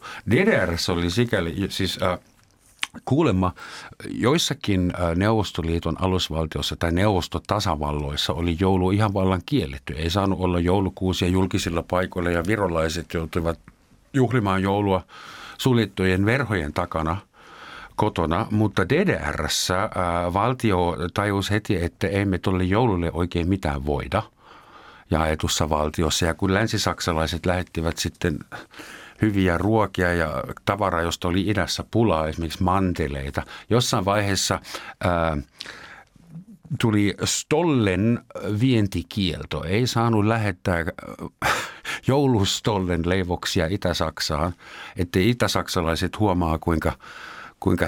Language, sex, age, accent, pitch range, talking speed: Finnish, male, 50-69, native, 85-100 Hz, 100 wpm